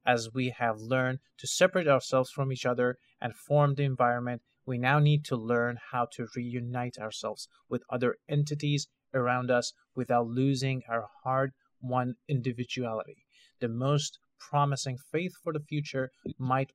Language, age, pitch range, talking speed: English, 30-49, 120-140 Hz, 145 wpm